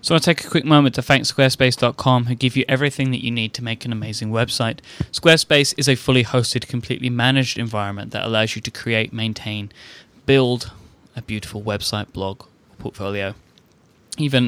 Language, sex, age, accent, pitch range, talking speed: English, male, 10-29, British, 105-125 Hz, 175 wpm